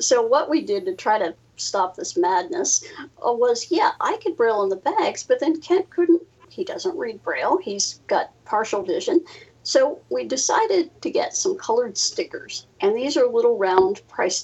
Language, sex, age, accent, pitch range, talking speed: English, female, 50-69, American, 290-440 Hz, 185 wpm